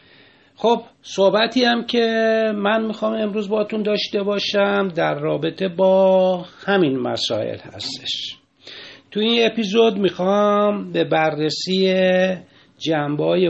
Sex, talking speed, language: male, 100 wpm, Persian